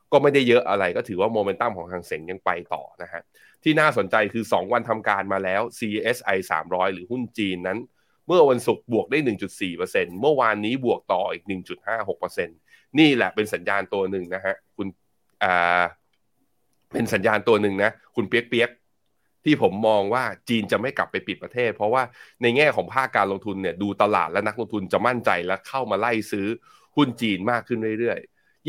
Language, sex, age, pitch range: Thai, male, 20-39, 95-120 Hz